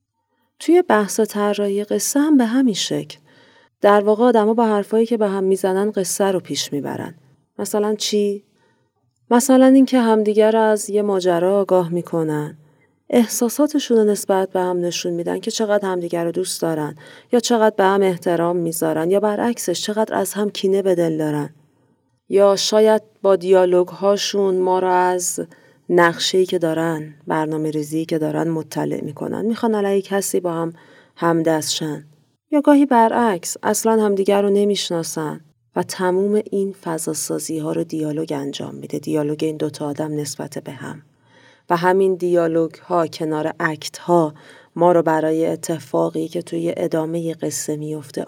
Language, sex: Persian, female